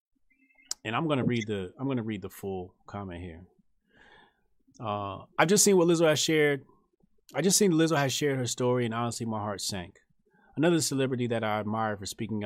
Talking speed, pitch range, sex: 200 wpm, 110-155 Hz, male